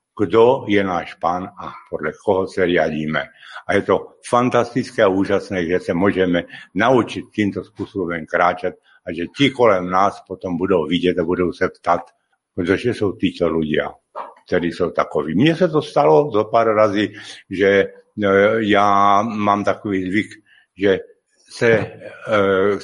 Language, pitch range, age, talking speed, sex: Slovak, 90-115 Hz, 70-89, 145 wpm, male